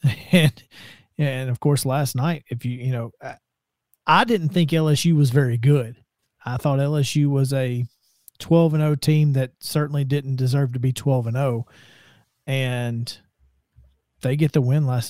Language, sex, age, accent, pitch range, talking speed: English, male, 40-59, American, 125-150 Hz, 165 wpm